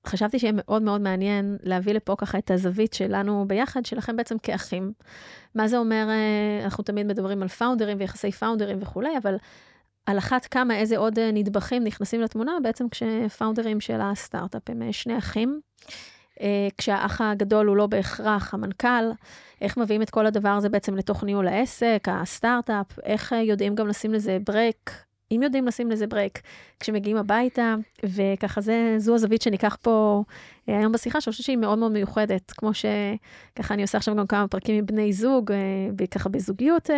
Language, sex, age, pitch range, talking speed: Hebrew, female, 20-39, 200-230 Hz, 160 wpm